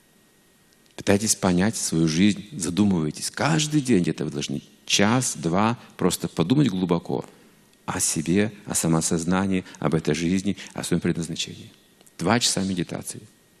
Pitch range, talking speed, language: 90-125 Hz, 120 wpm, Russian